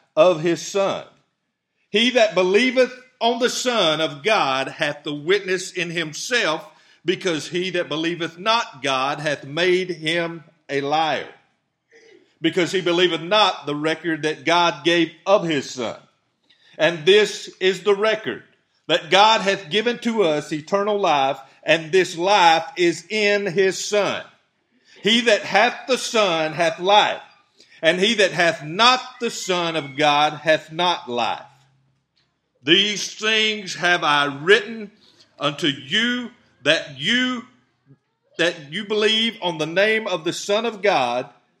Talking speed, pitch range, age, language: 140 wpm, 155-210 Hz, 50-69, English